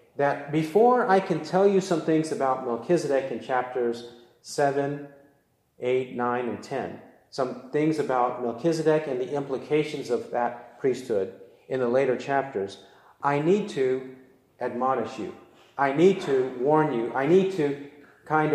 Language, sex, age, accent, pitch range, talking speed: English, male, 40-59, American, 120-170 Hz, 145 wpm